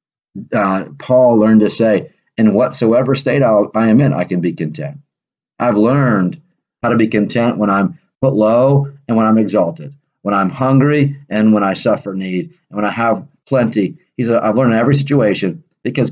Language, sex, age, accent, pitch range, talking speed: English, male, 40-59, American, 105-135 Hz, 185 wpm